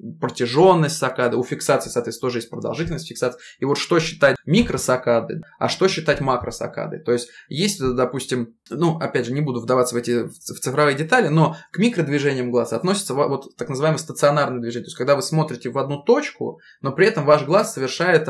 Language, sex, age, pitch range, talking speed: Russian, male, 20-39, 125-155 Hz, 185 wpm